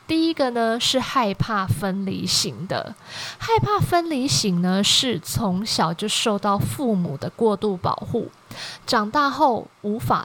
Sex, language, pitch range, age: female, Chinese, 195-255 Hz, 20-39